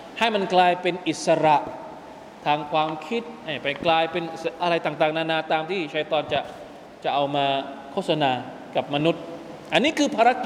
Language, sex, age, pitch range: Thai, male, 20-39, 170-285 Hz